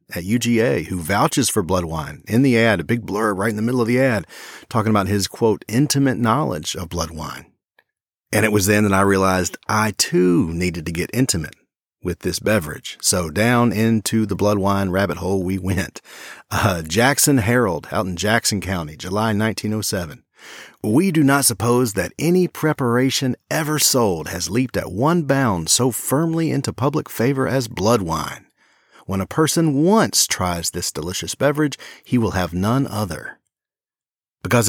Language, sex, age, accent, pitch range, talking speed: English, male, 40-59, American, 95-130 Hz, 175 wpm